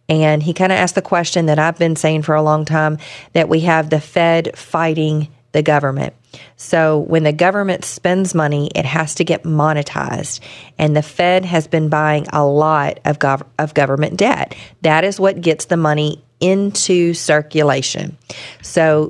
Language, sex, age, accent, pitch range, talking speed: English, female, 40-59, American, 150-175 Hz, 175 wpm